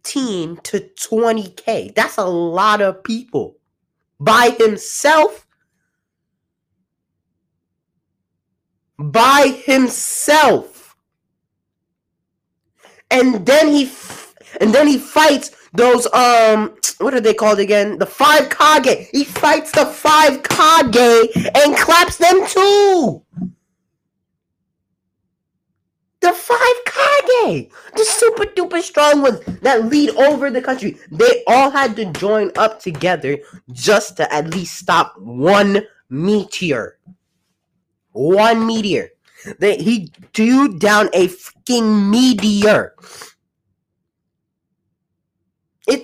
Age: 30-49